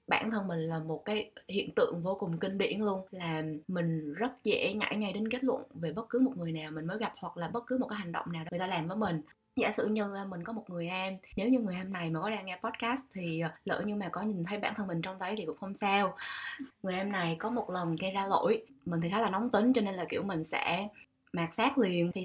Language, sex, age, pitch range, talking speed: Vietnamese, female, 20-39, 170-225 Hz, 280 wpm